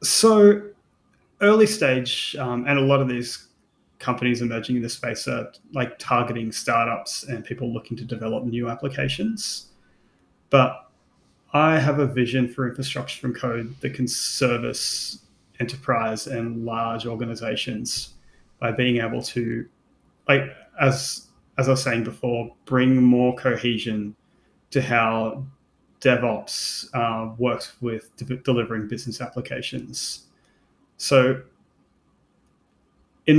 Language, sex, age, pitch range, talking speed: English, male, 30-49, 115-130 Hz, 120 wpm